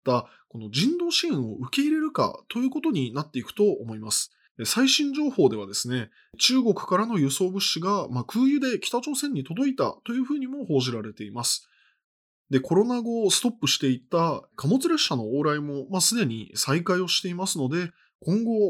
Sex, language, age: male, Japanese, 20-39